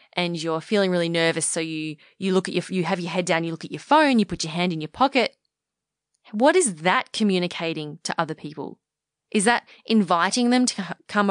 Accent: Australian